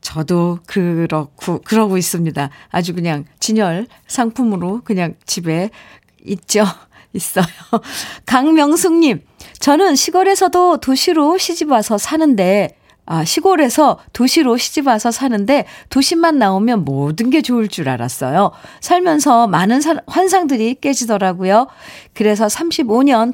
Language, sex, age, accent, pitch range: Korean, female, 50-69, native, 195-295 Hz